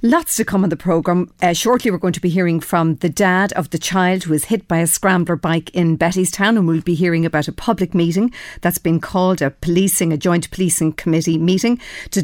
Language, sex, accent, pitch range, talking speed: English, female, Irish, 165-200 Hz, 235 wpm